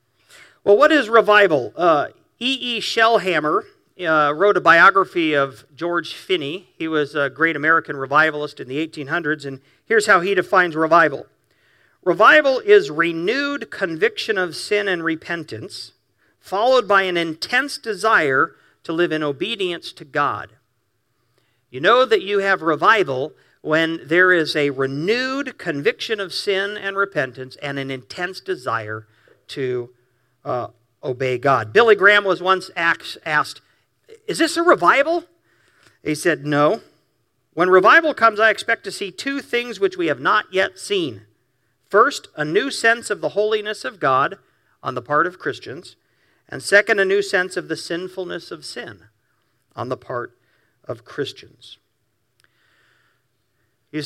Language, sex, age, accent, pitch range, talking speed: English, male, 50-69, American, 135-215 Hz, 145 wpm